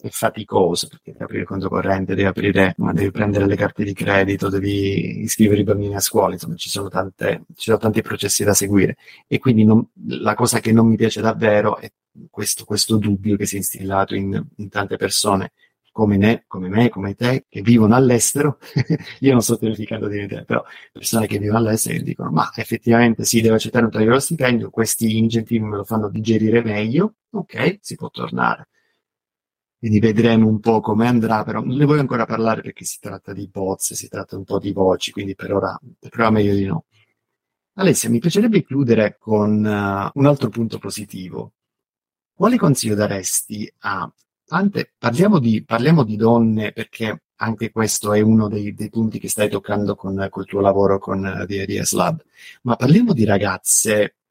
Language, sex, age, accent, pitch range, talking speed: Italian, male, 30-49, native, 100-115 Hz, 185 wpm